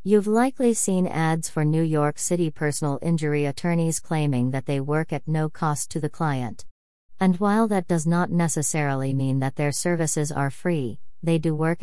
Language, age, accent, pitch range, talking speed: English, 40-59, American, 145-175 Hz, 185 wpm